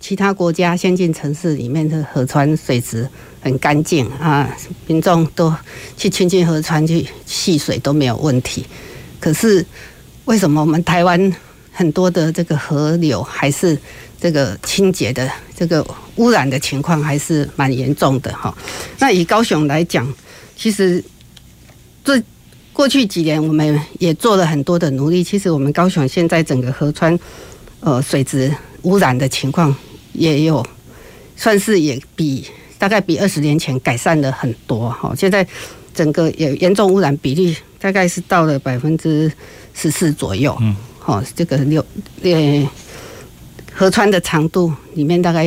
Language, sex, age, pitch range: Chinese, female, 50-69, 135-180 Hz